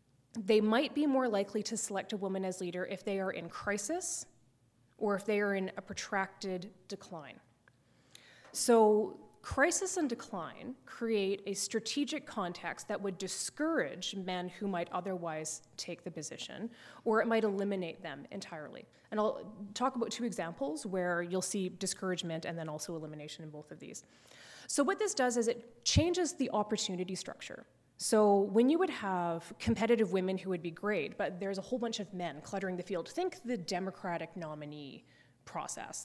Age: 20-39